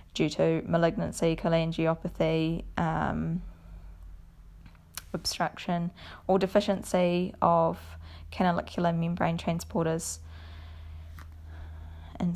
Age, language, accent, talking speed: 20-39, English, Australian, 65 wpm